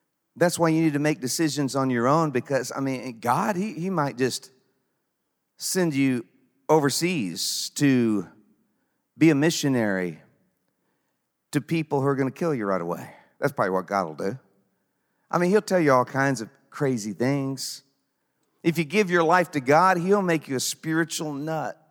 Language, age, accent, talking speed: English, 50-69, American, 175 wpm